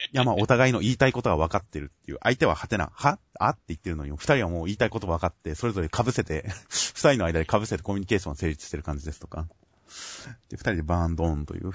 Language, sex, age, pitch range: Japanese, male, 30-49, 80-120 Hz